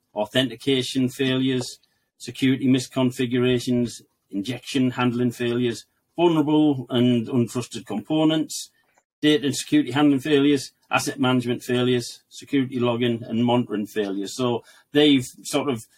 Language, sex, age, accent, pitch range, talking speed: English, male, 40-59, British, 120-130 Hz, 105 wpm